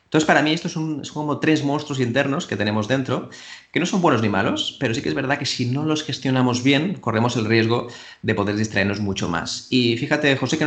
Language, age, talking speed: Spanish, 30-49, 240 wpm